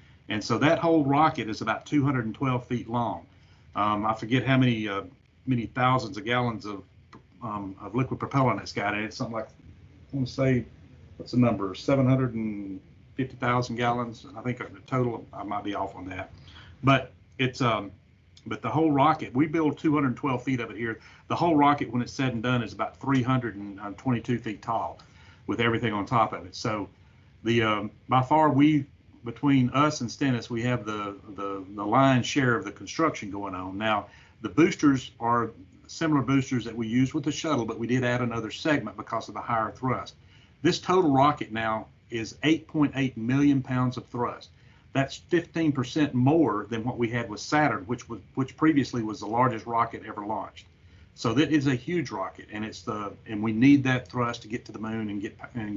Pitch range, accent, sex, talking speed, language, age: 105-130 Hz, American, male, 190 wpm, English, 50-69